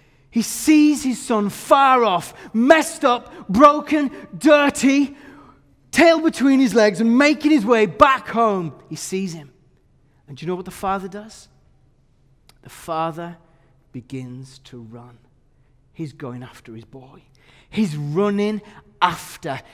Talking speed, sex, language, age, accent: 135 wpm, male, English, 30-49, British